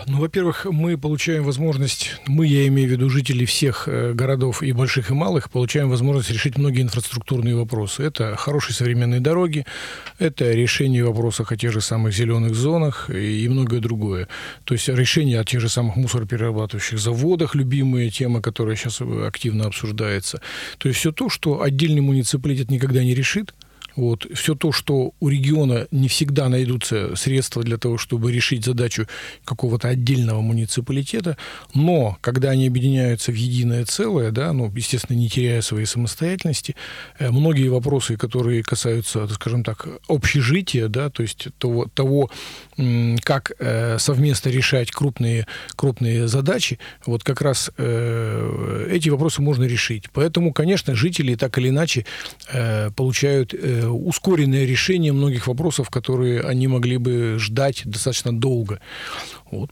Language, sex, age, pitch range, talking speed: Russian, male, 40-59, 120-140 Hz, 140 wpm